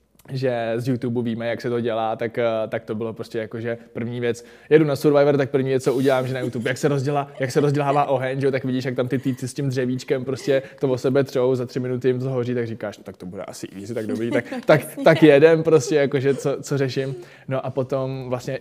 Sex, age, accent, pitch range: male, 20-39, native, 120-135 Hz